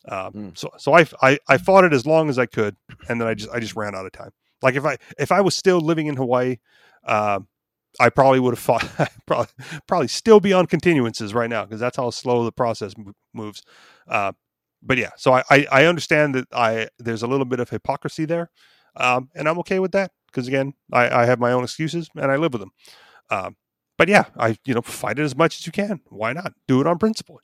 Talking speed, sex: 245 wpm, male